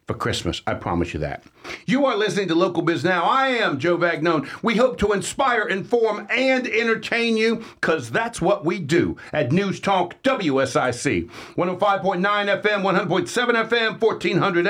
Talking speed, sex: 155 wpm, male